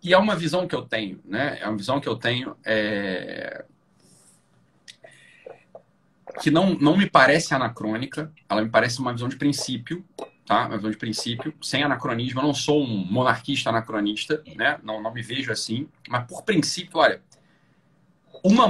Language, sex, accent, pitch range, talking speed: Portuguese, male, Brazilian, 120-160 Hz, 165 wpm